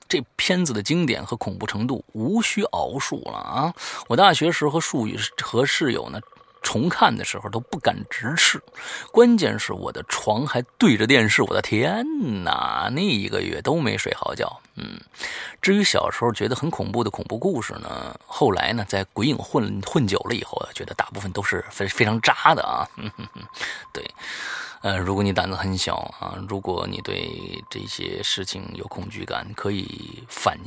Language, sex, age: Chinese, male, 30-49